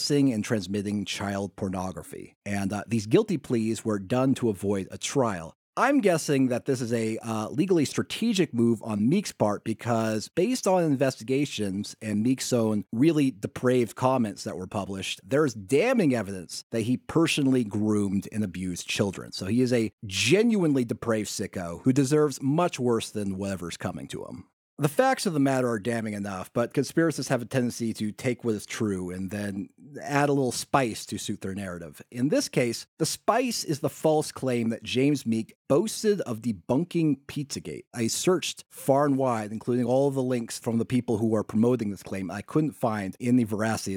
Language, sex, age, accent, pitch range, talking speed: English, male, 30-49, American, 105-135 Hz, 185 wpm